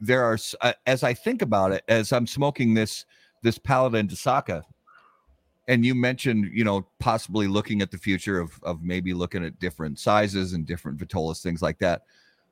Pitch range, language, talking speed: 95-120 Hz, English, 185 wpm